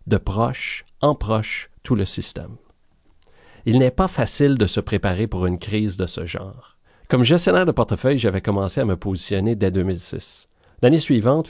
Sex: male